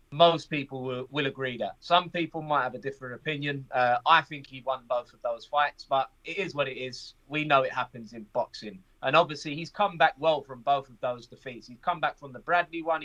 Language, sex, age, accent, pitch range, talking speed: English, male, 20-39, British, 125-160 Hz, 235 wpm